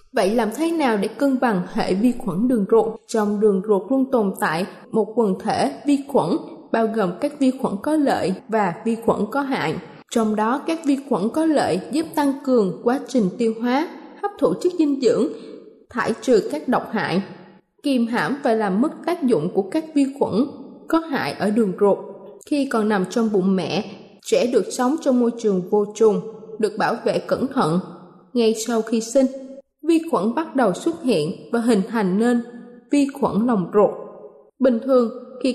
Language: Vietnamese